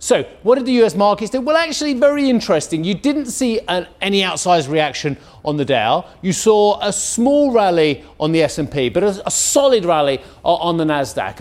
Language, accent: English, British